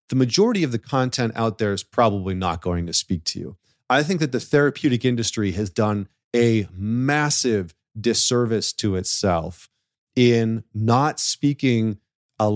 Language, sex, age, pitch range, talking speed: English, male, 40-59, 105-130 Hz, 155 wpm